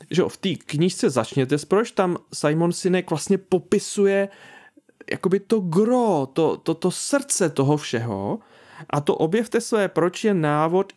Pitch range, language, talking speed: 155-200 Hz, Czech, 155 wpm